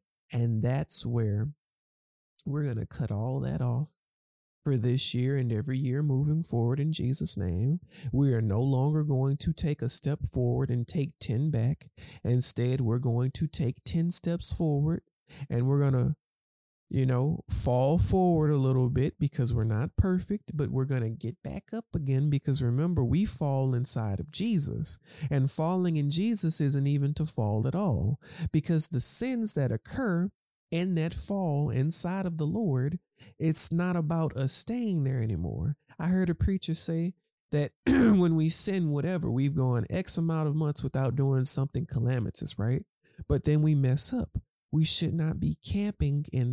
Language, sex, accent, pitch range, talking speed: English, male, American, 130-165 Hz, 175 wpm